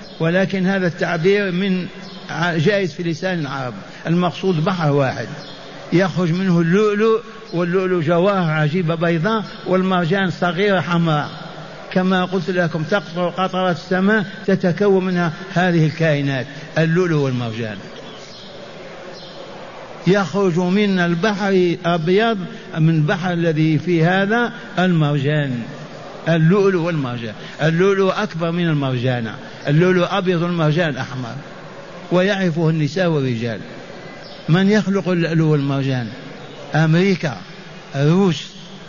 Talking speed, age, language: 95 wpm, 60-79, Arabic